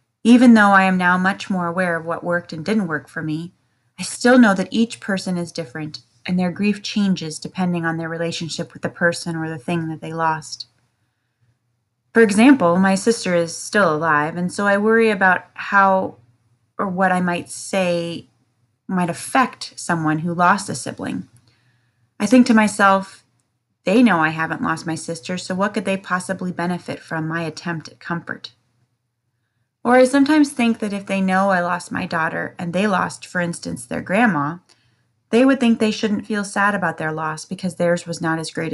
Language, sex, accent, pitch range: English, female, American, 150-195 Hz